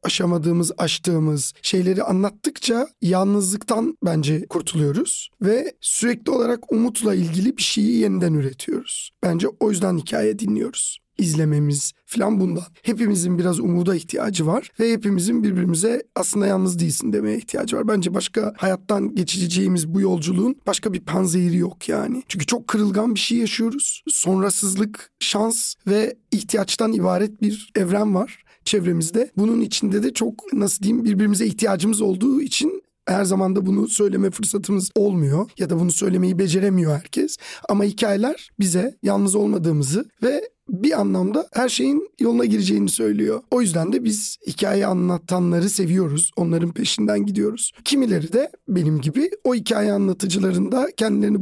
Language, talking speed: Turkish, 135 wpm